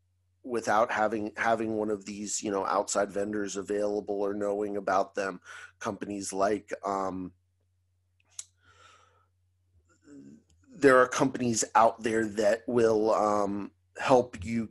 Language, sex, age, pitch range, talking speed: English, male, 30-49, 100-120 Hz, 115 wpm